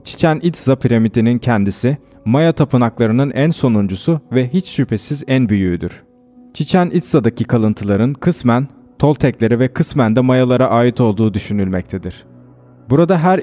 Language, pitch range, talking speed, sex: Turkish, 115-150 Hz, 120 wpm, male